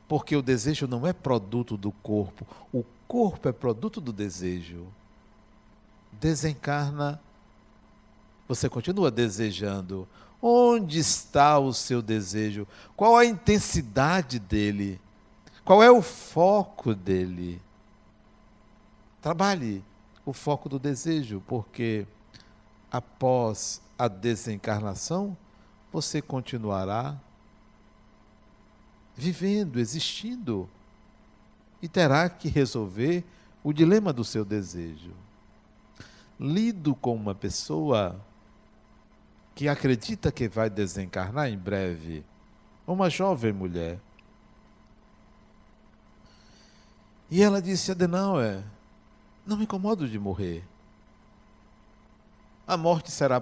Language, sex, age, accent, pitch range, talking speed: Portuguese, male, 60-79, Brazilian, 105-165 Hz, 90 wpm